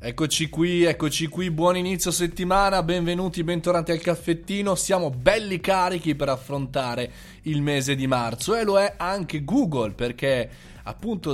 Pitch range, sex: 125-175 Hz, male